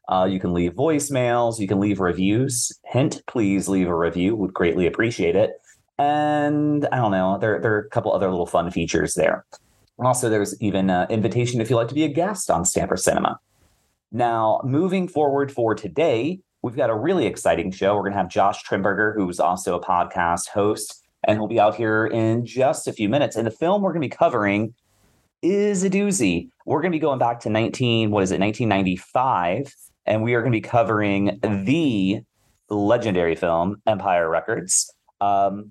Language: English